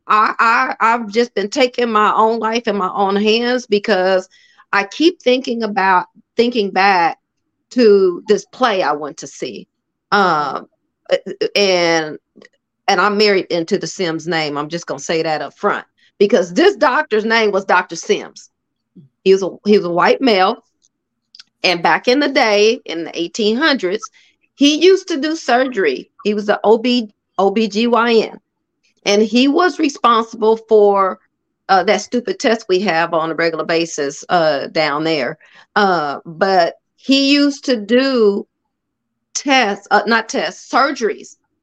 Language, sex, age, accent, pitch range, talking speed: English, female, 40-59, American, 190-250 Hz, 155 wpm